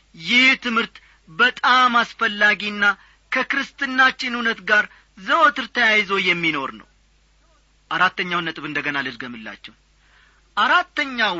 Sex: male